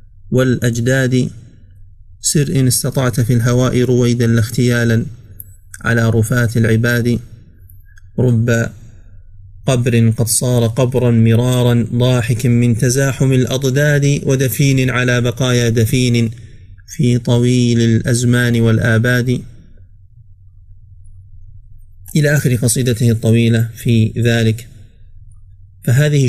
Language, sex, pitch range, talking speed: Arabic, male, 105-130 Hz, 80 wpm